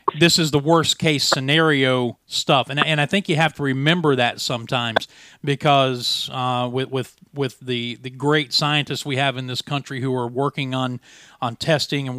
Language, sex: English, male